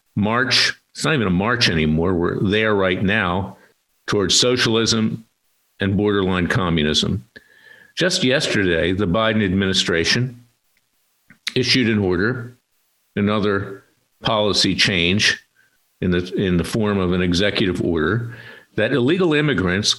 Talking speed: 115 wpm